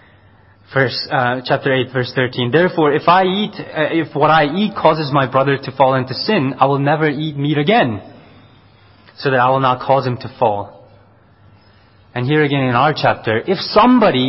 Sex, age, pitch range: male, 20-39, 110-155 Hz